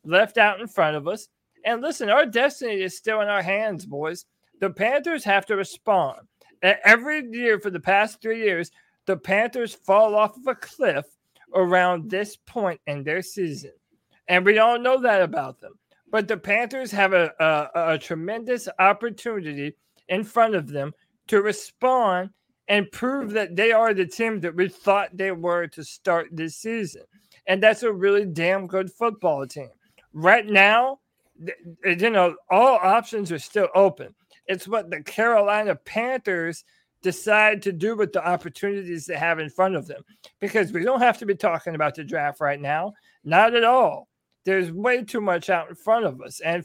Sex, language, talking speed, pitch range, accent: male, English, 180 wpm, 180-220 Hz, American